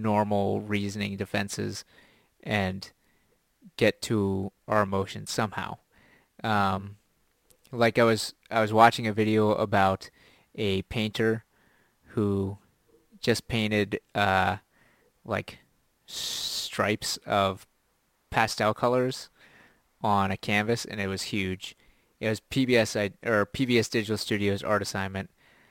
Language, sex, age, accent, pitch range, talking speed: English, male, 30-49, American, 100-115 Hz, 105 wpm